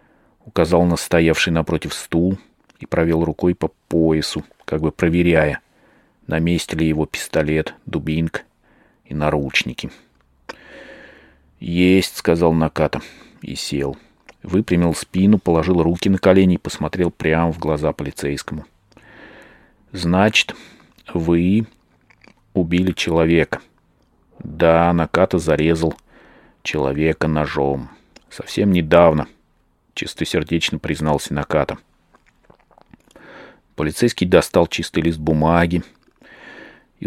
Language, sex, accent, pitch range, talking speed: Russian, male, native, 80-90 Hz, 95 wpm